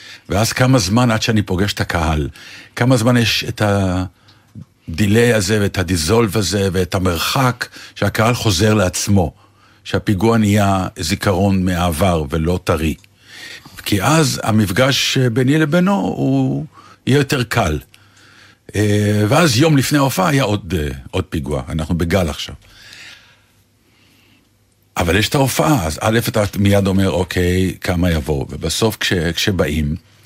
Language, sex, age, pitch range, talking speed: Hebrew, male, 60-79, 95-125 Hz, 125 wpm